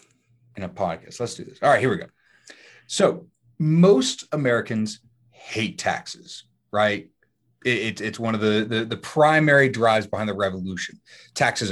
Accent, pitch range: American, 110-155 Hz